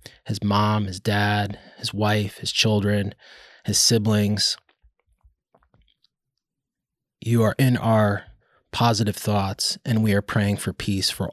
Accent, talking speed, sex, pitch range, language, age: American, 120 wpm, male, 105-115 Hz, English, 20-39